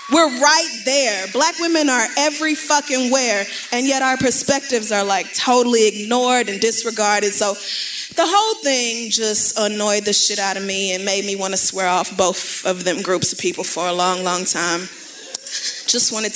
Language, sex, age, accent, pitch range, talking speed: English, female, 20-39, American, 190-260 Hz, 185 wpm